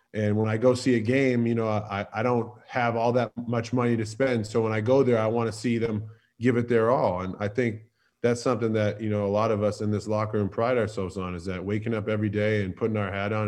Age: 20-39